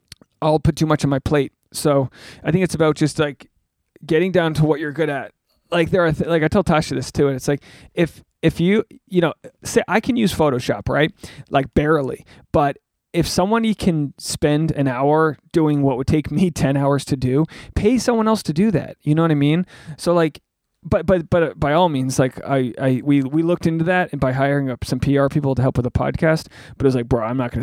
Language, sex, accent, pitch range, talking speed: English, male, American, 135-165 Hz, 240 wpm